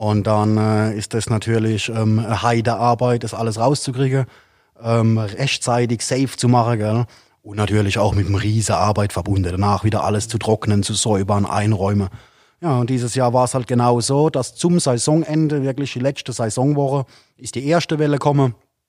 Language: German